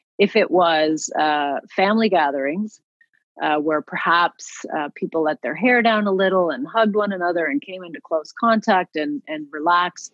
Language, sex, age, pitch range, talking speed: English, female, 30-49, 155-200 Hz, 170 wpm